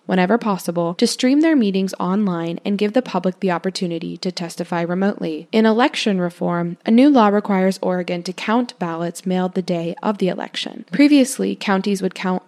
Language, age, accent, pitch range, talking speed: English, 10-29, American, 175-215 Hz, 180 wpm